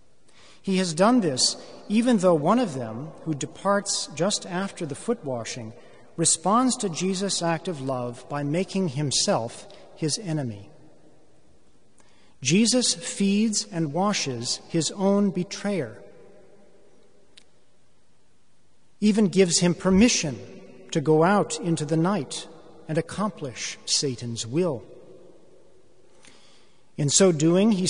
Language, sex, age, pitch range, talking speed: English, male, 40-59, 145-195 Hz, 110 wpm